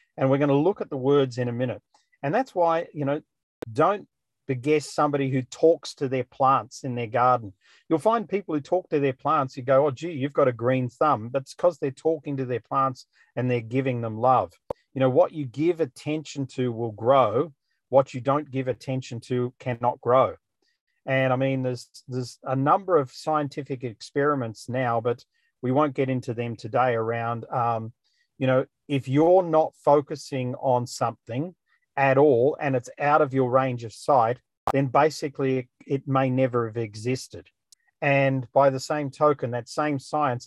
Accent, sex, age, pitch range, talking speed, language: Australian, male, 40-59, 125-150 Hz, 185 wpm, English